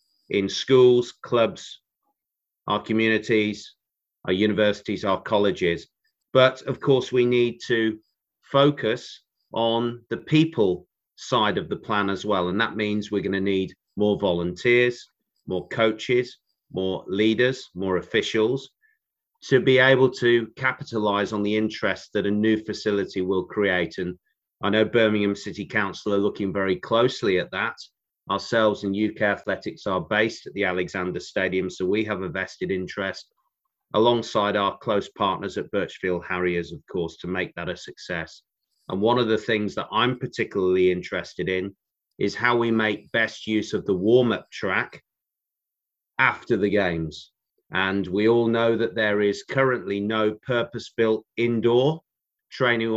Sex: male